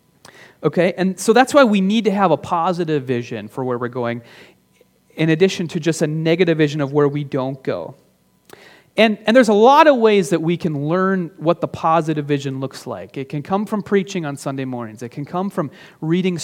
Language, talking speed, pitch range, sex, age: English, 210 wpm, 145-195 Hz, male, 30-49